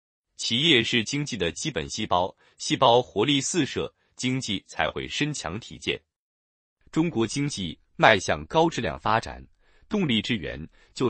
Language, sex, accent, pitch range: Chinese, male, native, 95-145 Hz